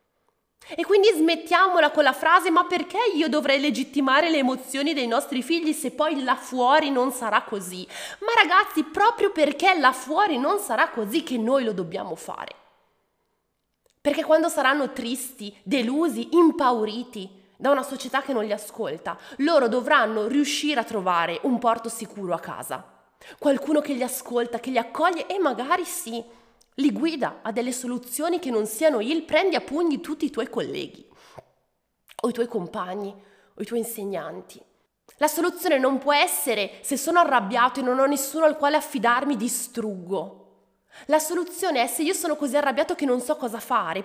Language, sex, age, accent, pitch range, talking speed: Italian, female, 20-39, native, 230-310 Hz, 170 wpm